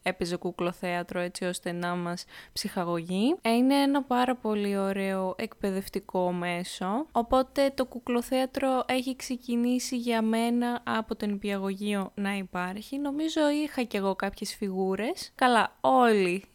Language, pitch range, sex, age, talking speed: Greek, 195-250 Hz, female, 20-39, 125 wpm